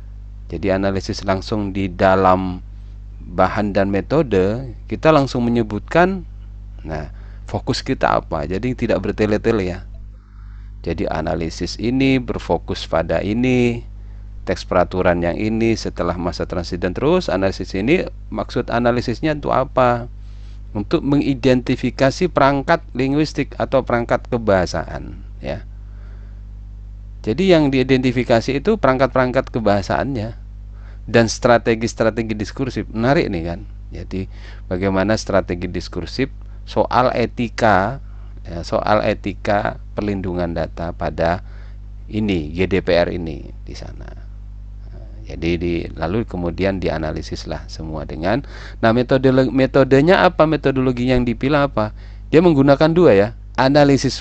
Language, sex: Indonesian, male